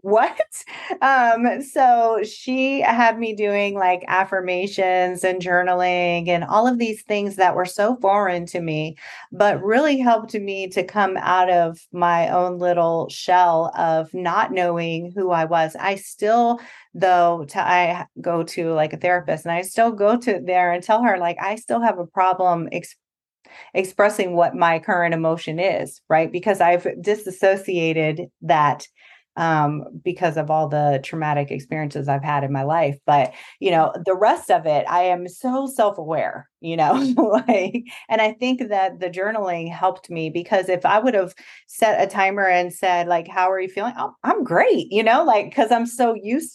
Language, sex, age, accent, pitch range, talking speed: English, female, 30-49, American, 170-210 Hz, 175 wpm